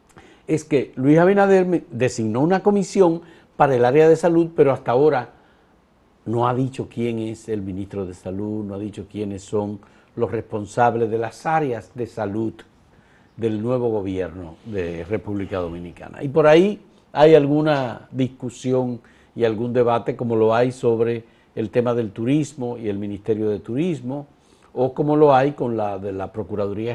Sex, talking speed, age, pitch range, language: male, 165 wpm, 50-69, 110-135 Hz, Spanish